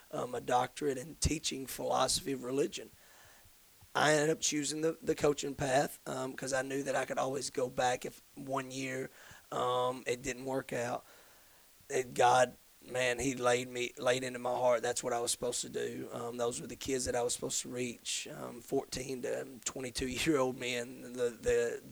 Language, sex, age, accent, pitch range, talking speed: English, male, 30-49, American, 125-140 Hz, 195 wpm